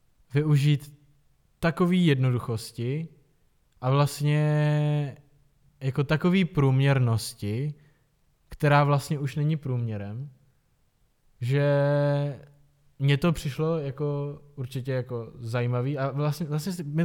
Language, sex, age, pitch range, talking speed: Czech, male, 20-39, 125-145 Hz, 90 wpm